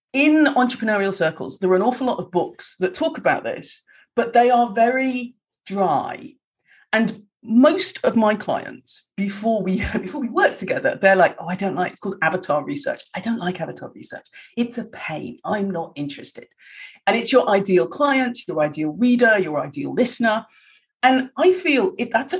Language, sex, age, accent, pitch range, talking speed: English, female, 40-59, British, 185-260 Hz, 175 wpm